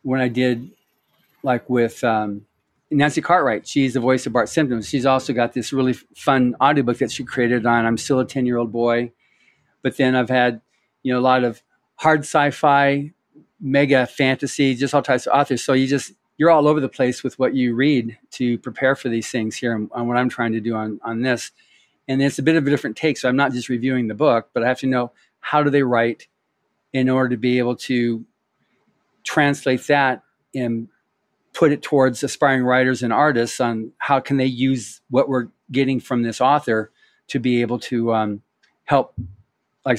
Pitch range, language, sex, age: 120-140 Hz, English, male, 40-59